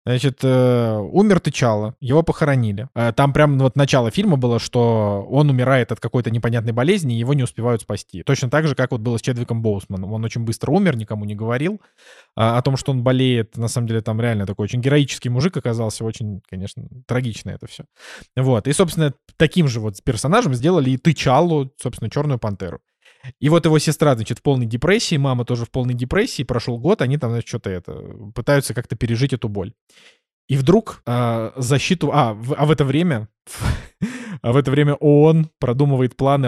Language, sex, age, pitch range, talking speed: Russian, male, 20-39, 115-140 Hz, 185 wpm